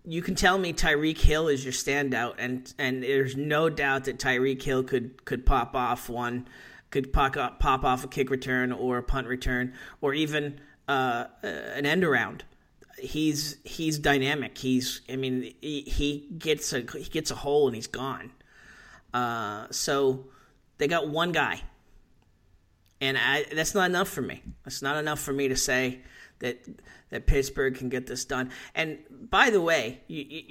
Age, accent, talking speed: 40-59, American, 175 wpm